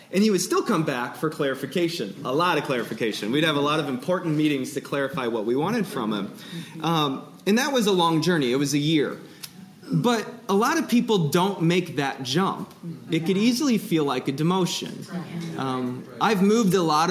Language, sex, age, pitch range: English, male, 20-39, 140-190 Hz